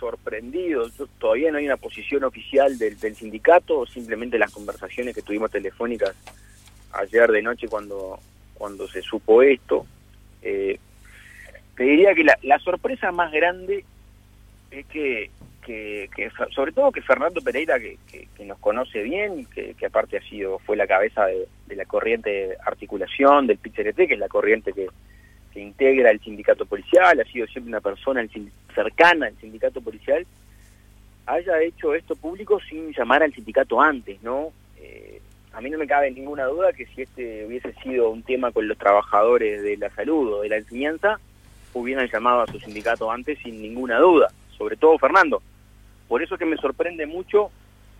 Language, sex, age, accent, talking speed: Spanish, male, 30-49, Argentinian, 175 wpm